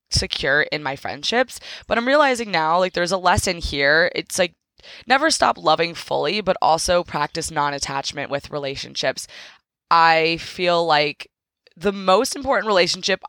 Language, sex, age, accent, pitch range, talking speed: English, female, 20-39, American, 155-210 Hz, 145 wpm